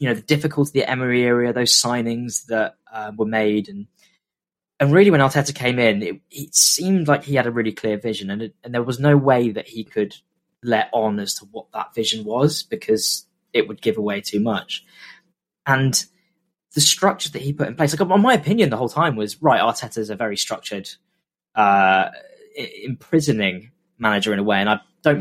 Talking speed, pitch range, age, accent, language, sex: 205 wpm, 110-150 Hz, 10-29, British, English, male